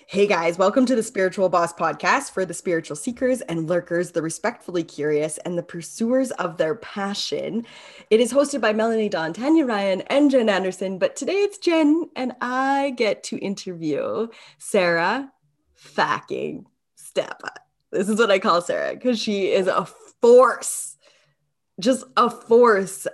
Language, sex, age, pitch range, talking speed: English, female, 10-29, 170-235 Hz, 155 wpm